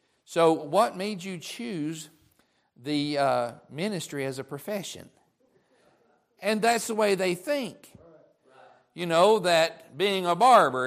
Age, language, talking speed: 50-69, English, 125 wpm